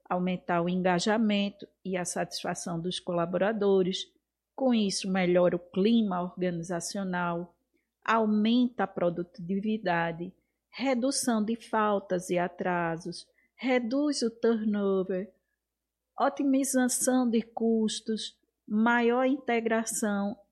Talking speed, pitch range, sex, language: 90 wpm, 180-235 Hz, female, Portuguese